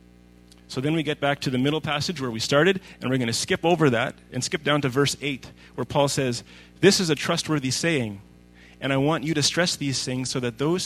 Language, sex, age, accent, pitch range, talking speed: English, male, 30-49, American, 110-150 Hz, 245 wpm